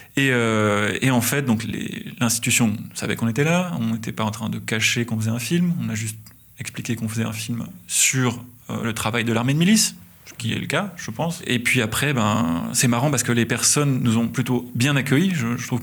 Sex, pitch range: male, 115-135 Hz